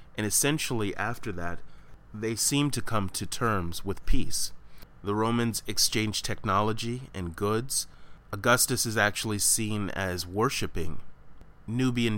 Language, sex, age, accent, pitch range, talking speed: English, male, 30-49, American, 95-115 Hz, 125 wpm